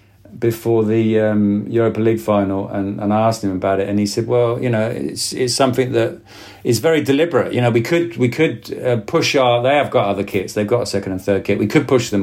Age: 50-69